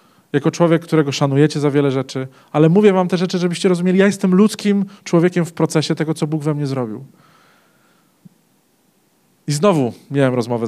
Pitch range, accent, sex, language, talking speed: 140-200 Hz, native, male, Polish, 170 wpm